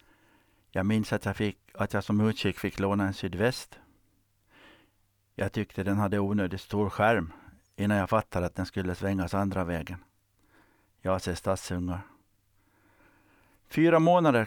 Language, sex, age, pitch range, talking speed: Swedish, male, 60-79, 95-110 Hz, 140 wpm